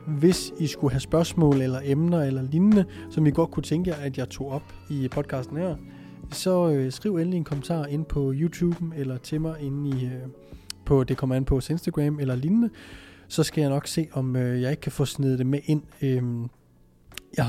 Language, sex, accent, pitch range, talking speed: Danish, male, native, 130-155 Hz, 215 wpm